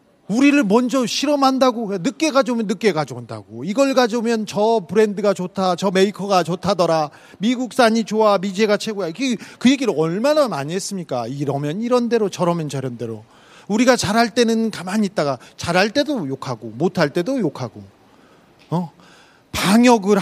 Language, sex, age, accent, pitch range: Korean, male, 40-59, native, 150-225 Hz